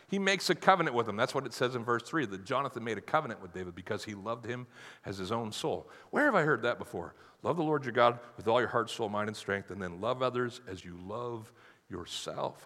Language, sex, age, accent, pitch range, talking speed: English, male, 50-69, American, 110-175 Hz, 260 wpm